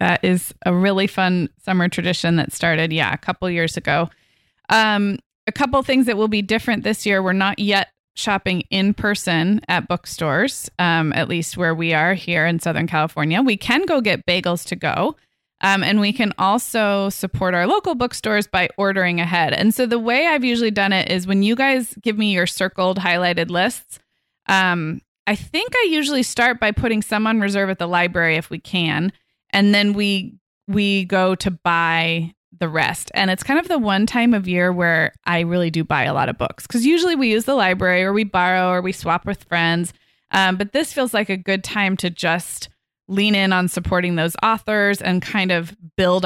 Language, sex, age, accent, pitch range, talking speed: English, female, 20-39, American, 175-210 Hz, 205 wpm